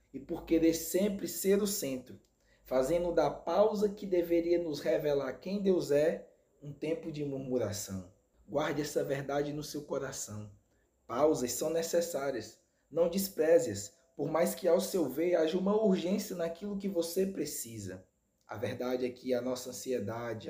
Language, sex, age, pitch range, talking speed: Portuguese, male, 20-39, 125-170 Hz, 155 wpm